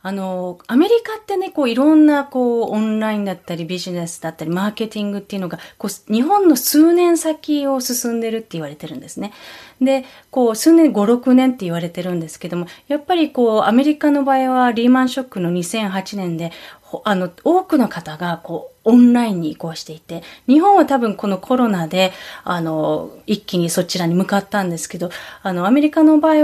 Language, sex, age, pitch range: Japanese, female, 30-49, 180-275 Hz